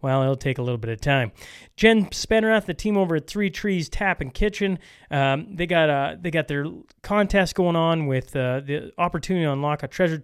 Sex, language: male, English